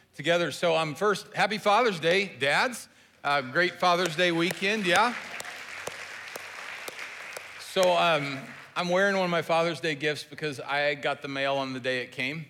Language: English